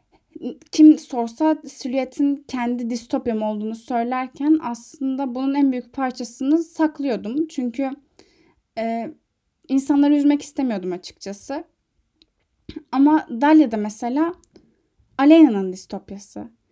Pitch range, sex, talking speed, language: 235-290 Hz, female, 85 wpm, Turkish